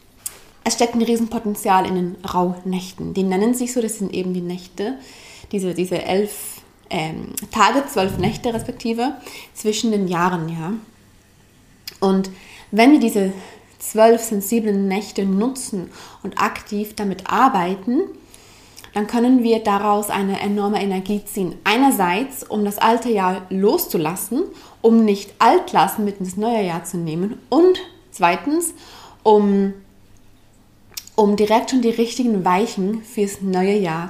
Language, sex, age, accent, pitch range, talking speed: German, female, 20-39, German, 185-230 Hz, 135 wpm